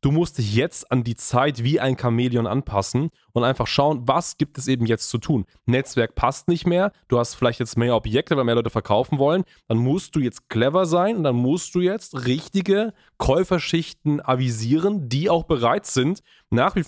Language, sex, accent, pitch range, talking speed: German, male, German, 120-155 Hz, 200 wpm